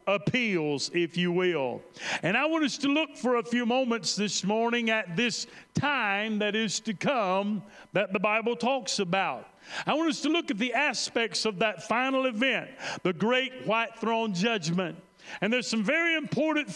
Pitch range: 200-250 Hz